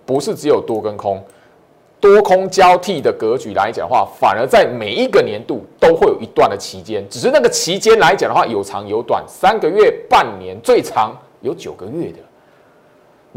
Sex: male